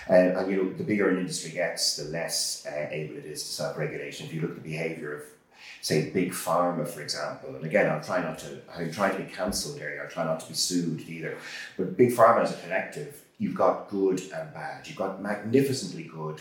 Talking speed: 225 wpm